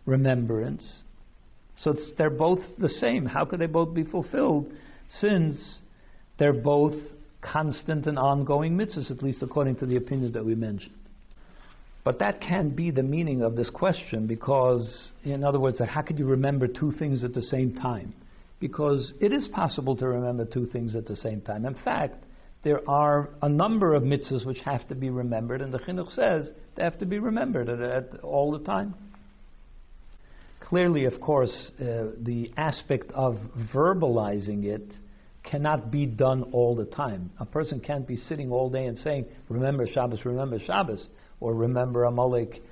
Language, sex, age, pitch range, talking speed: English, male, 60-79, 120-150 Hz, 170 wpm